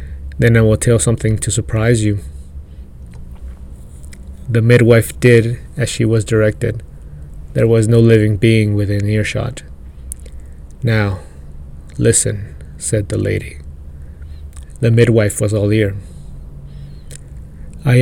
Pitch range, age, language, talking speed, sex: 70-115 Hz, 30-49, English, 110 wpm, male